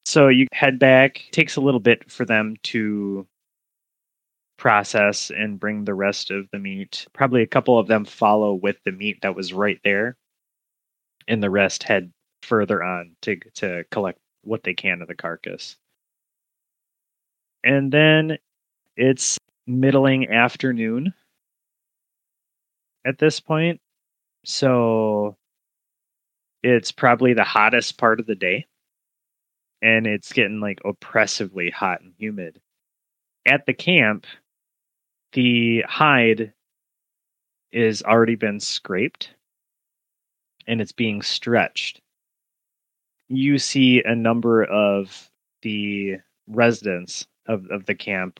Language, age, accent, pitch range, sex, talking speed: English, 20-39, American, 100-125 Hz, male, 120 wpm